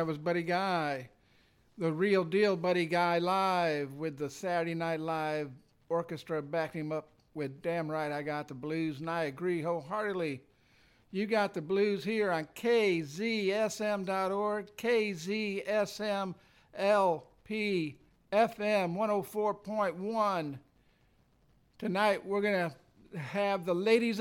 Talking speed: 115 wpm